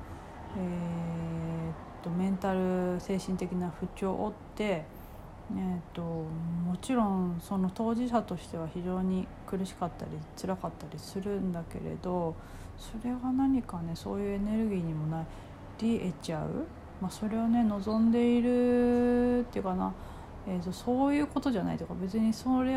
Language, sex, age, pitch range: Japanese, female, 40-59, 165-220 Hz